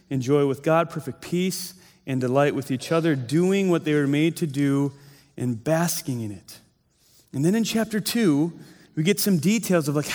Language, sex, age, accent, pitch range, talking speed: English, male, 30-49, American, 160-210 Hz, 190 wpm